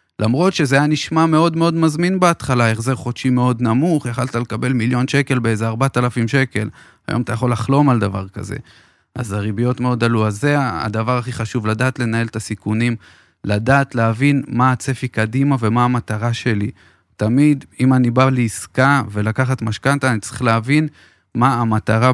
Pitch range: 110-135 Hz